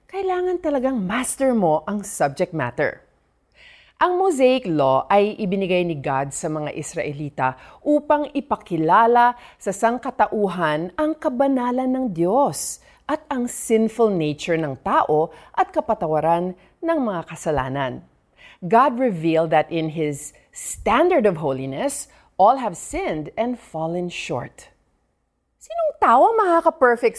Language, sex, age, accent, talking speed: Filipino, female, 40-59, native, 115 wpm